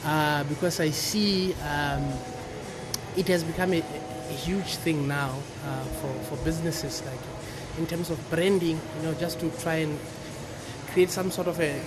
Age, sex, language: 20-39, male, English